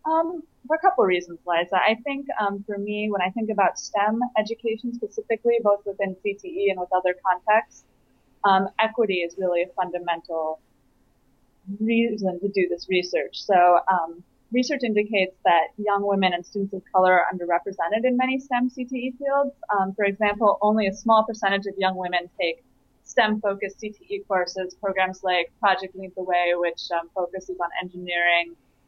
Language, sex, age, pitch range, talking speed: English, female, 20-39, 180-215 Hz, 165 wpm